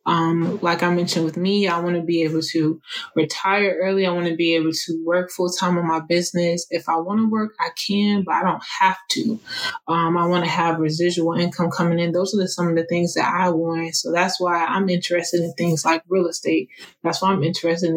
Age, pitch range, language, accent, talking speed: 20-39, 170-185 Hz, English, American, 235 wpm